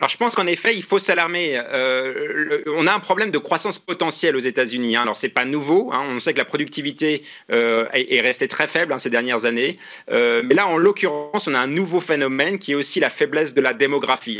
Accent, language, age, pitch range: French, French, 30-49, 140-185 Hz